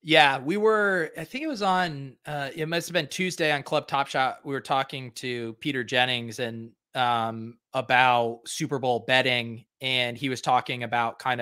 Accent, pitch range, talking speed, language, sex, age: American, 125-150 Hz, 190 wpm, English, male, 30-49